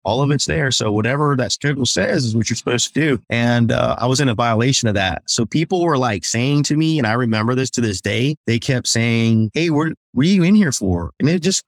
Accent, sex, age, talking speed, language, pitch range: American, male, 20-39, 265 wpm, English, 100-130 Hz